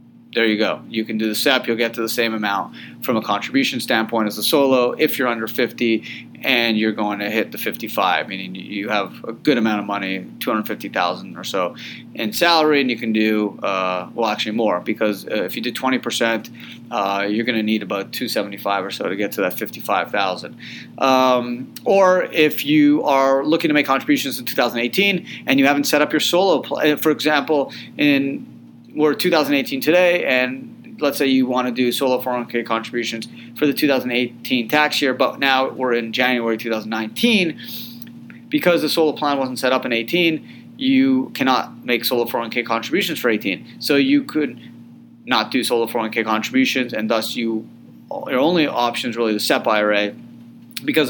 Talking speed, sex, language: 195 wpm, male, English